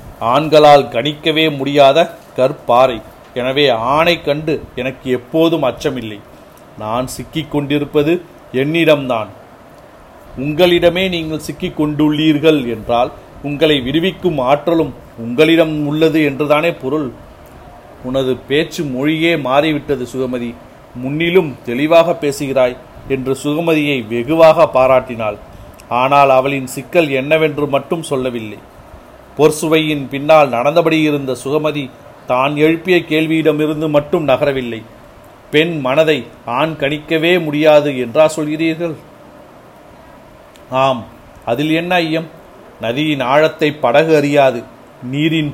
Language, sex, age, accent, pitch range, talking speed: Tamil, male, 40-59, native, 130-160 Hz, 90 wpm